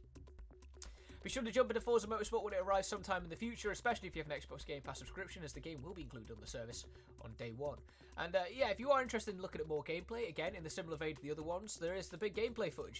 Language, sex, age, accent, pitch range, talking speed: Italian, male, 20-39, British, 140-215 Hz, 285 wpm